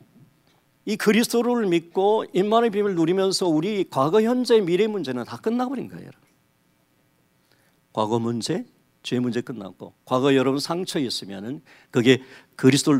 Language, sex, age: Korean, male, 50-69